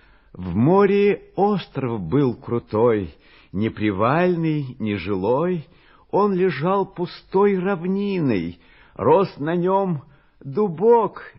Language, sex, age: Russian, male, 60-79